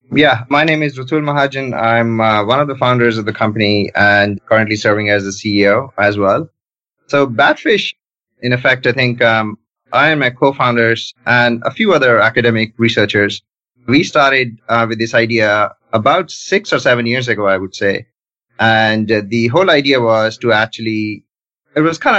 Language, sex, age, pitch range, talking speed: English, male, 30-49, 110-135 Hz, 175 wpm